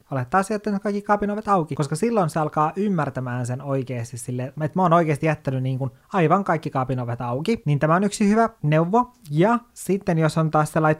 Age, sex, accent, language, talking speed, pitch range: 20-39, male, native, Finnish, 190 wpm, 135-180 Hz